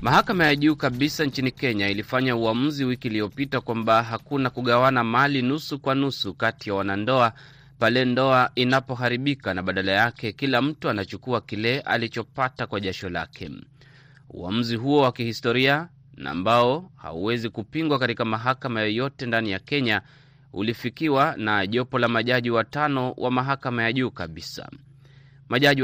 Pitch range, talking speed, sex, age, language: 115-135 Hz, 140 wpm, male, 30-49, Swahili